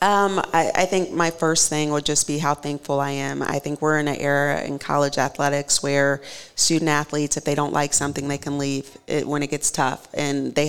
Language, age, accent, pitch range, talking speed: English, 40-59, American, 145-160 Hz, 230 wpm